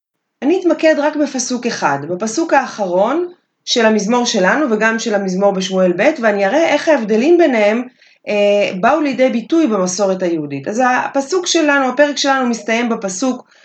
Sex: female